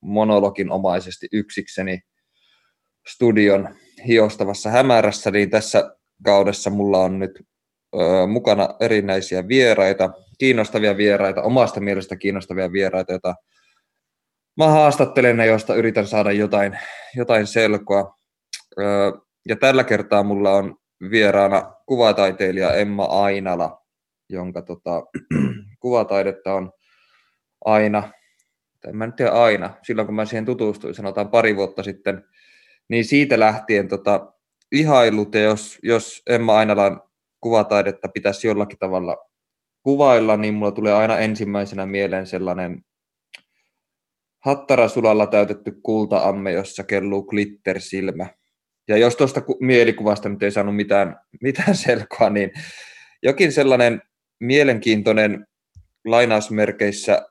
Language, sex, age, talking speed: Finnish, male, 20-39, 110 wpm